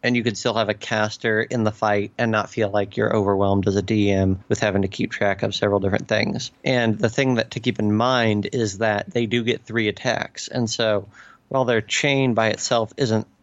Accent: American